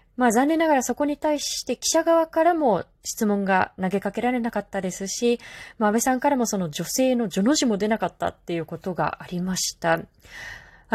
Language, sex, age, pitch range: Japanese, female, 20-39, 185-260 Hz